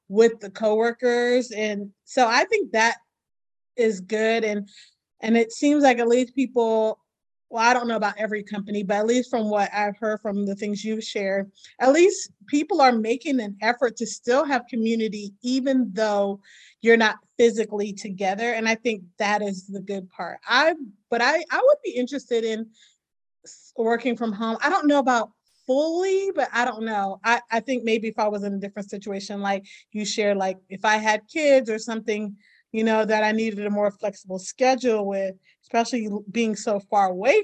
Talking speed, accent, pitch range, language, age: 190 wpm, American, 205-250 Hz, English, 30-49